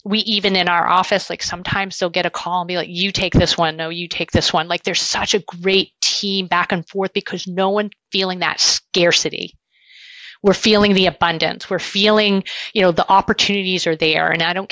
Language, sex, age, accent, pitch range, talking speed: English, female, 30-49, American, 175-210 Hz, 215 wpm